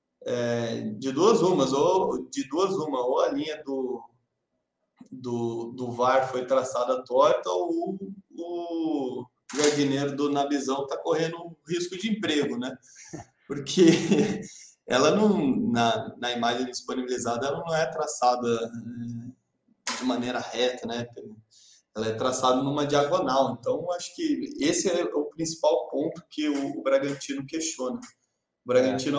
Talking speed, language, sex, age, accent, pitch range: 135 wpm, Portuguese, male, 20-39, Brazilian, 125-180 Hz